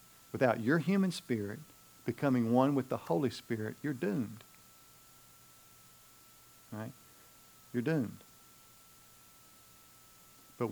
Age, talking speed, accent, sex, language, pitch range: 50-69, 90 wpm, American, male, English, 105-130 Hz